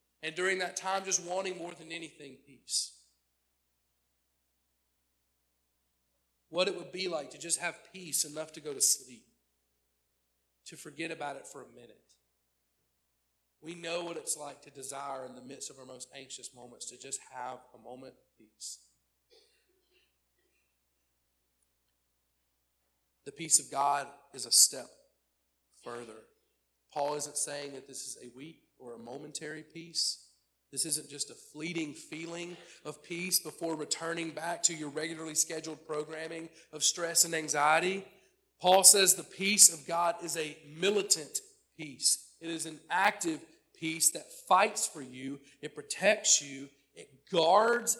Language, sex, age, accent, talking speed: English, male, 40-59, American, 145 wpm